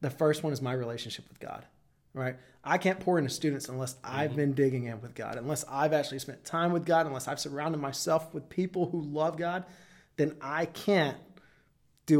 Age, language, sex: 30-49, English, male